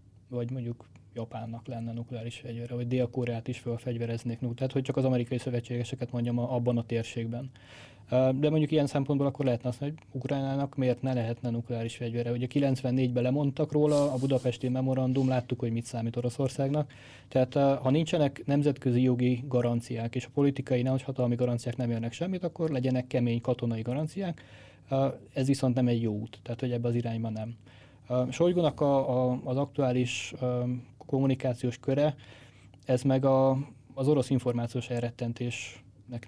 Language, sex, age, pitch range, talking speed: Hungarian, male, 20-39, 120-135 Hz, 155 wpm